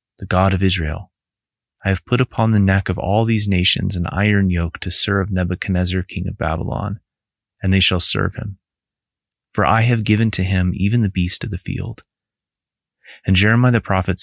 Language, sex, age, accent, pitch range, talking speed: English, male, 30-49, American, 90-105 Hz, 185 wpm